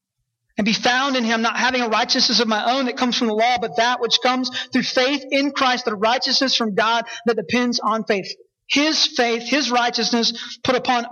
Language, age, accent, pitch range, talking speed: English, 20-39, American, 195-235 Hz, 210 wpm